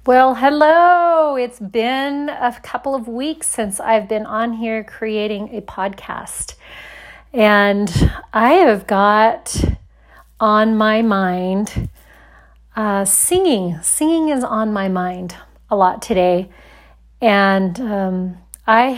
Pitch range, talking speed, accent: 190-225 Hz, 115 wpm, American